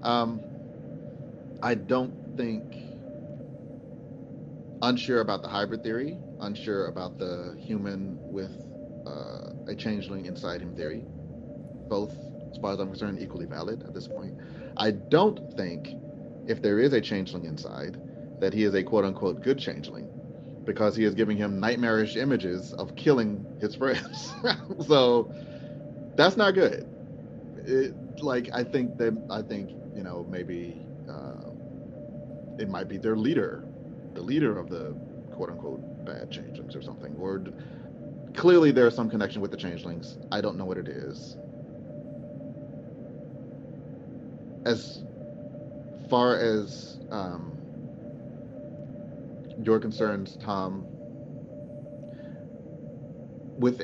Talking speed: 125 wpm